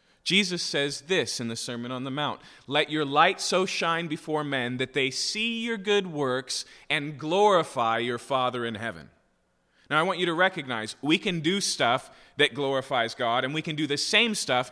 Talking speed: 195 wpm